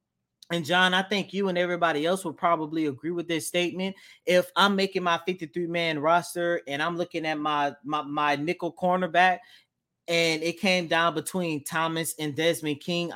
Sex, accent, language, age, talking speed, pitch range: male, American, English, 20-39, 175 wpm, 150-185 Hz